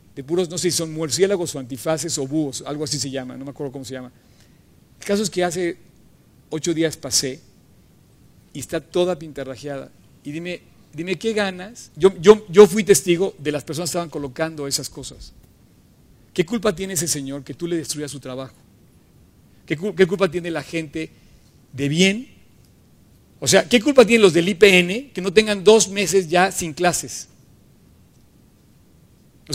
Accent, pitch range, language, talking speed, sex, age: Mexican, 150-205 Hz, Spanish, 175 wpm, male, 50-69